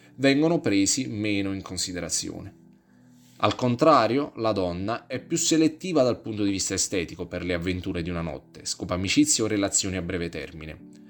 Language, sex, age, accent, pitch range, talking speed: Italian, male, 20-39, native, 95-125 Hz, 160 wpm